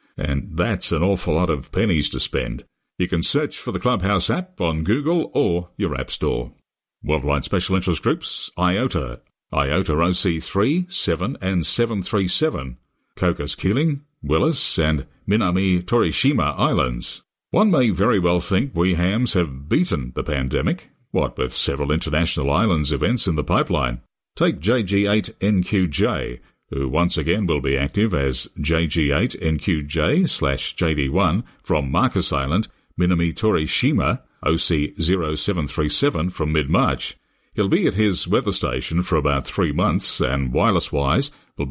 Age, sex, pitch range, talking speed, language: 50-69, male, 75-95 Hz, 130 wpm, English